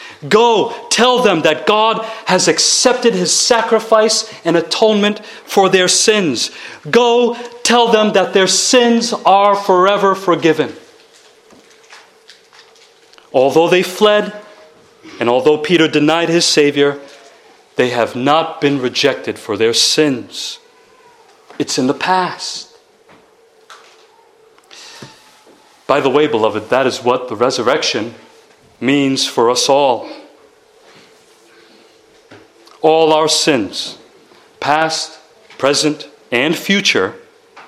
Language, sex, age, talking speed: English, male, 40-59, 100 wpm